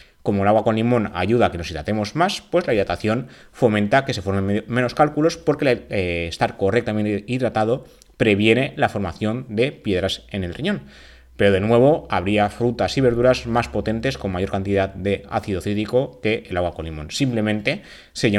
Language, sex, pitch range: Spanish, male, 100-130 Hz